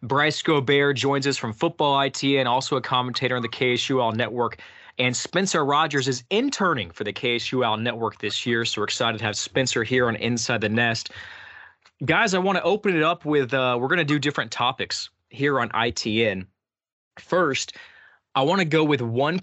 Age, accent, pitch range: 20-39, American, 120-150 Hz